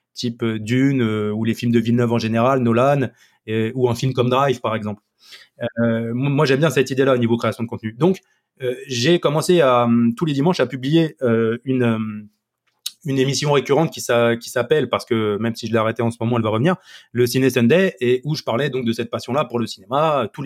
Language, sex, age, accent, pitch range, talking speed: French, male, 20-39, French, 120-160 Hz, 230 wpm